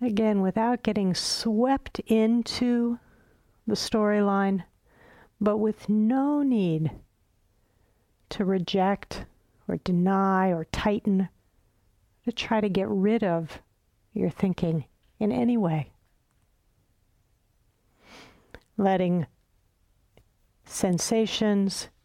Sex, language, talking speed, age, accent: female, English, 80 wpm, 50-69, American